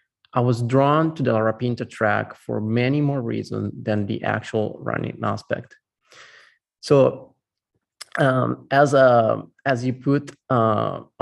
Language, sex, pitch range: English, male, 110-125 Hz